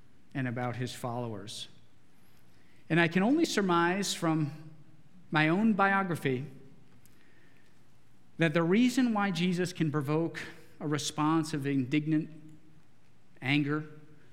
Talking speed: 105 wpm